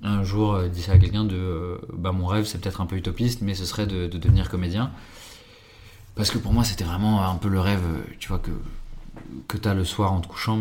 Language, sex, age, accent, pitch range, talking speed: French, male, 20-39, French, 90-110 Hz, 240 wpm